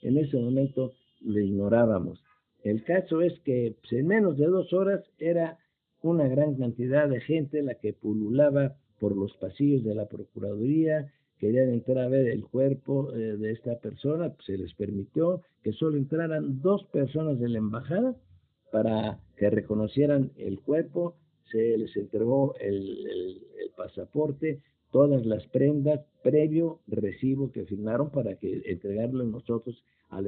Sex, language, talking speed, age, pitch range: male, Spanish, 150 wpm, 50-69, 110-145 Hz